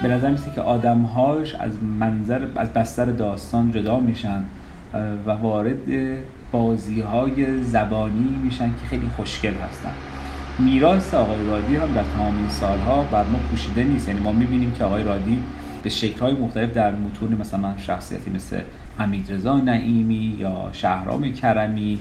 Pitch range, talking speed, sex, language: 100-120 Hz, 150 wpm, male, Persian